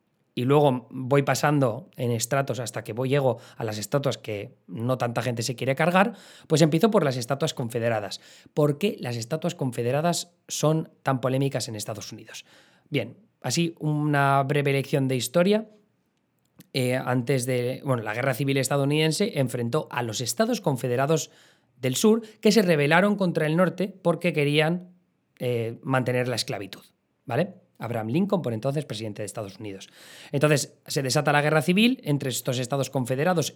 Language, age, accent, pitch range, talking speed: Spanish, 20-39, Spanish, 125-165 Hz, 160 wpm